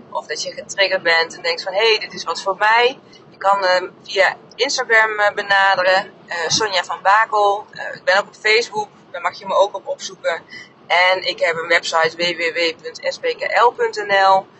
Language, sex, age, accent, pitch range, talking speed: Dutch, female, 30-49, Dutch, 170-210 Hz, 185 wpm